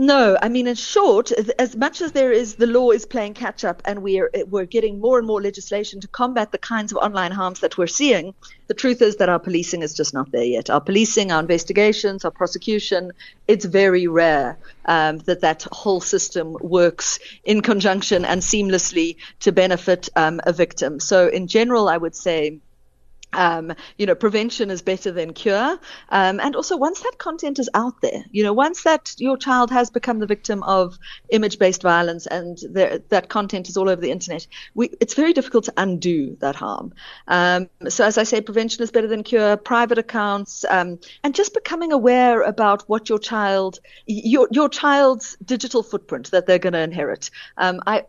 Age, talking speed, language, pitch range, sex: 50-69, 190 wpm, English, 180-240 Hz, female